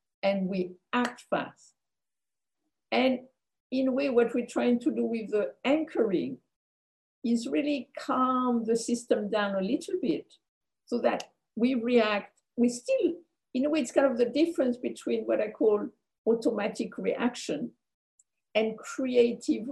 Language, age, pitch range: English, 50-69, 215-280 Hz